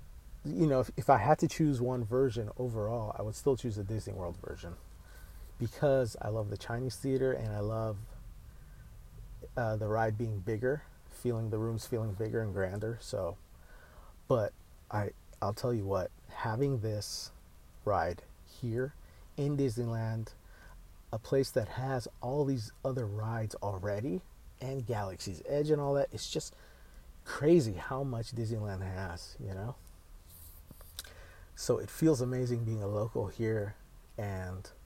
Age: 30-49